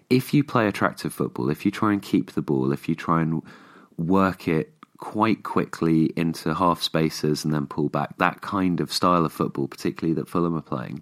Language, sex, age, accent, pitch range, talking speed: English, male, 30-49, British, 80-100 Hz, 205 wpm